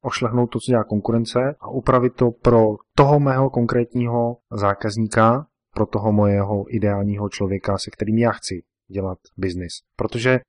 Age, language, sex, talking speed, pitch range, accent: 30-49, Czech, male, 145 wpm, 100-120 Hz, native